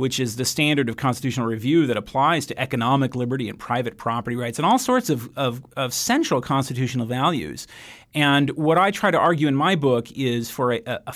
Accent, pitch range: American, 125-175 Hz